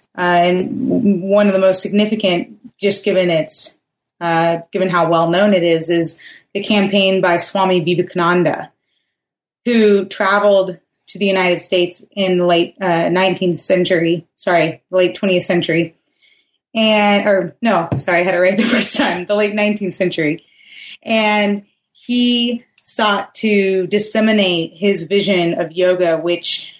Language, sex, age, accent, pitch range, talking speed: English, female, 20-39, American, 180-215 Hz, 145 wpm